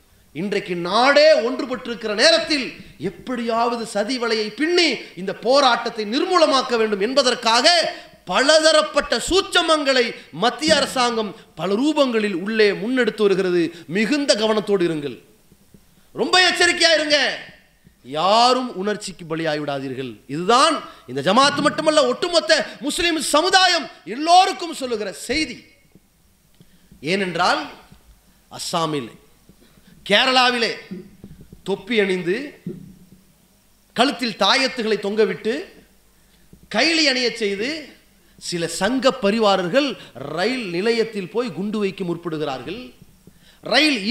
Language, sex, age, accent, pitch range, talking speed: English, male, 30-49, Indian, 185-280 Hz, 70 wpm